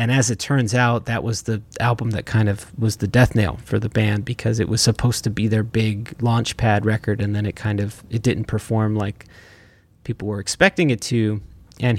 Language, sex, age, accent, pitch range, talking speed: English, male, 30-49, American, 105-120 Hz, 225 wpm